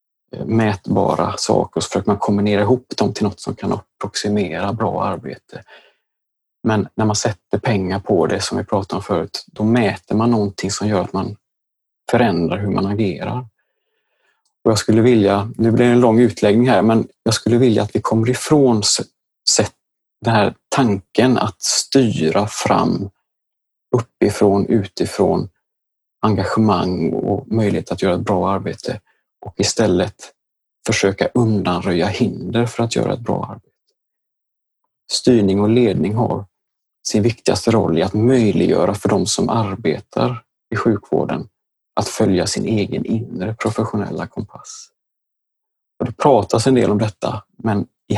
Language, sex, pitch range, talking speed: Swedish, male, 100-115 Hz, 145 wpm